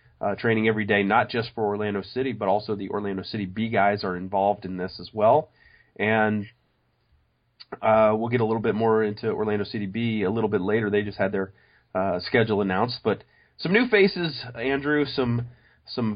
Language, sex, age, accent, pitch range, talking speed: English, male, 30-49, American, 110-125 Hz, 195 wpm